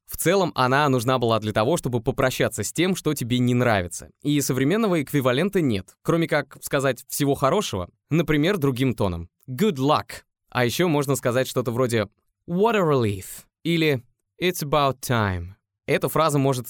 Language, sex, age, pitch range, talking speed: Russian, male, 20-39, 110-150 Hz, 160 wpm